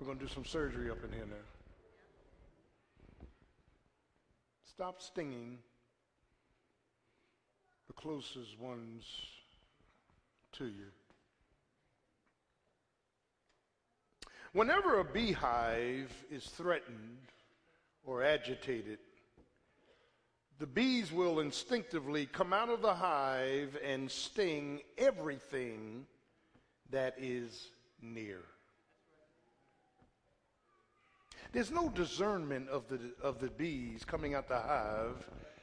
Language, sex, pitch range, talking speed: English, male, 125-165 Hz, 85 wpm